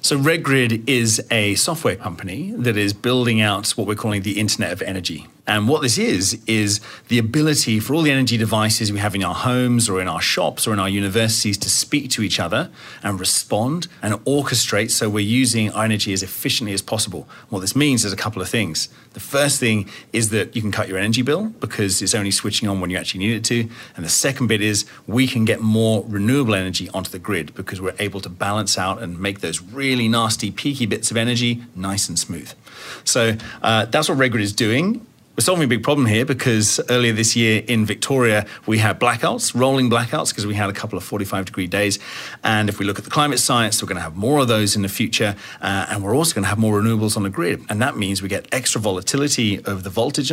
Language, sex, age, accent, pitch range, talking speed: English, male, 30-49, British, 100-120 Hz, 235 wpm